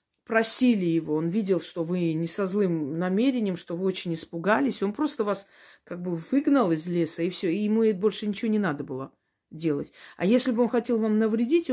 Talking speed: 200 wpm